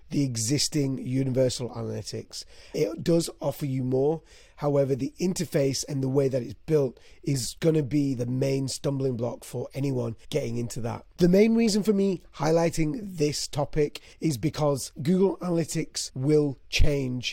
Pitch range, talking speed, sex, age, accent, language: 130-160 Hz, 160 wpm, male, 30-49, British, English